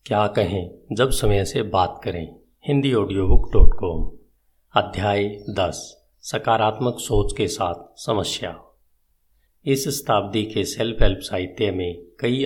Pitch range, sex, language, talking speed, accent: 90-110 Hz, male, Hindi, 115 wpm, native